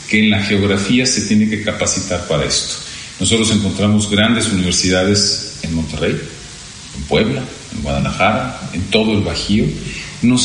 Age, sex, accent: 40-59, male, Mexican